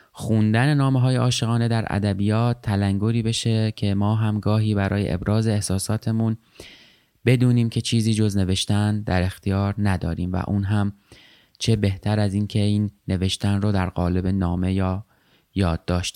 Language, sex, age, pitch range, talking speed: Persian, male, 30-49, 95-115 Hz, 135 wpm